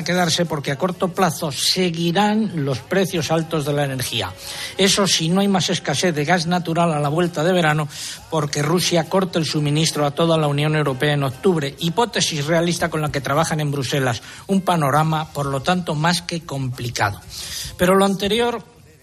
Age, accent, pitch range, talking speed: 60-79, Spanish, 145-180 Hz, 180 wpm